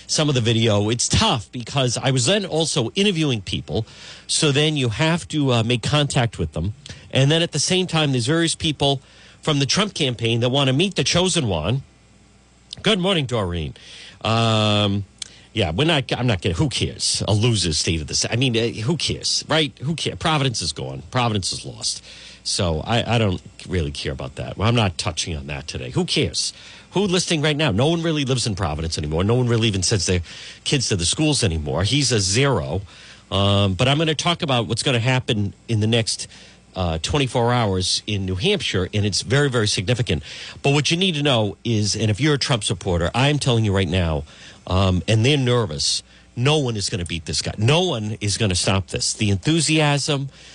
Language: English